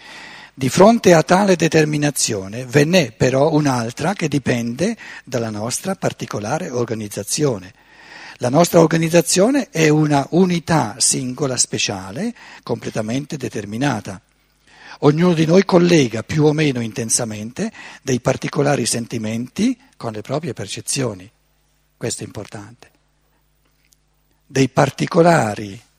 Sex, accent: male, native